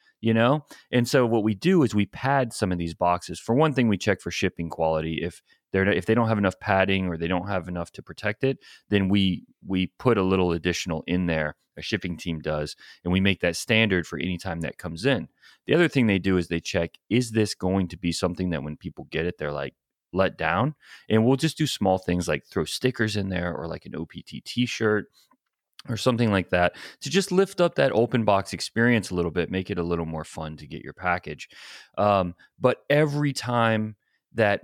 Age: 30-49